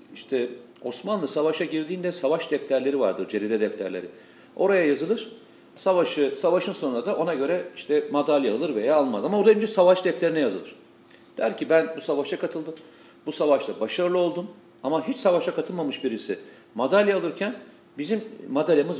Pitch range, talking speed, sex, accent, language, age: 140-220 Hz, 150 wpm, male, native, Turkish, 50-69